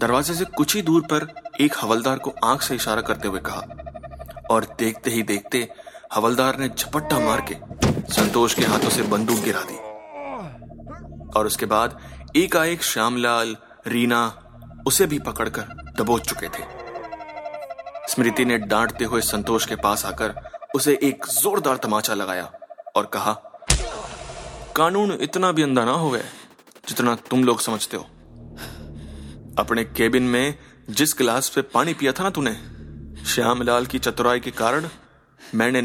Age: 30-49